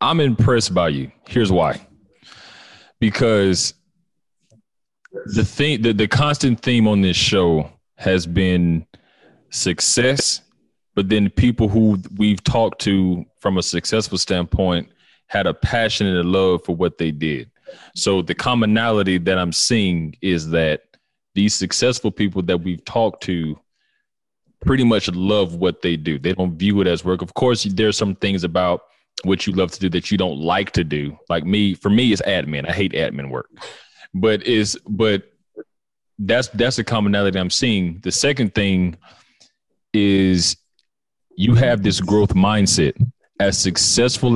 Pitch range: 90-110 Hz